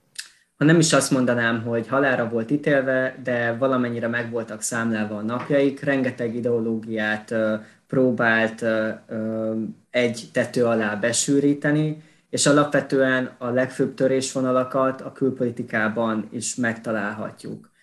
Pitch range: 115-130 Hz